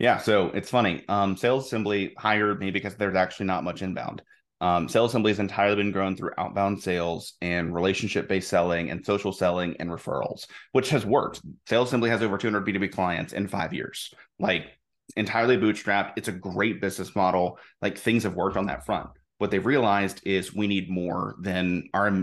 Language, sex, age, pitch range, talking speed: English, male, 30-49, 90-105 Hz, 190 wpm